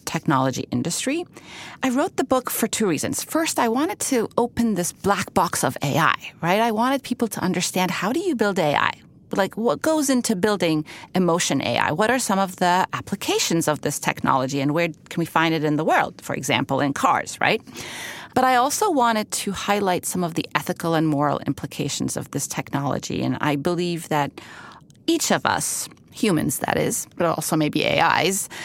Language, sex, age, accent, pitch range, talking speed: English, female, 30-49, American, 155-230 Hz, 190 wpm